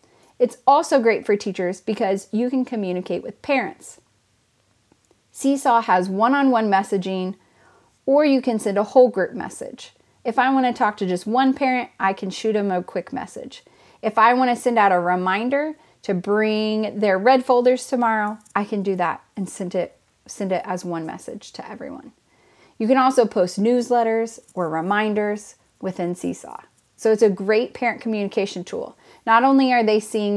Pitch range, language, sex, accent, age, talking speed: 190-240 Hz, English, female, American, 30-49, 170 wpm